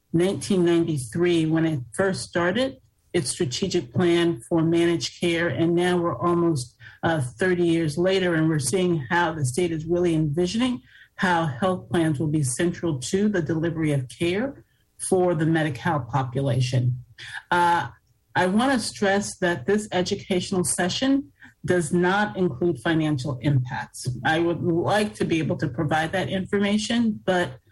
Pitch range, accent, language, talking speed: 145-180 Hz, American, English, 145 wpm